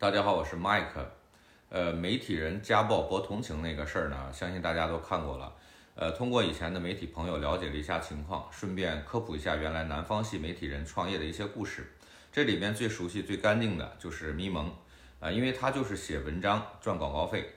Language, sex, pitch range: Chinese, male, 75-105 Hz